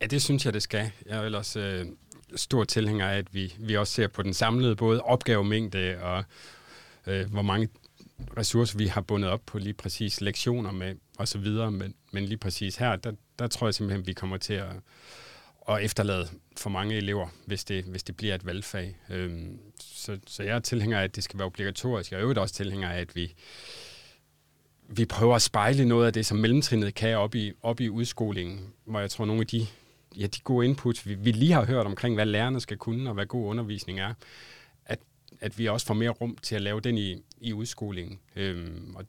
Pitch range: 95-115 Hz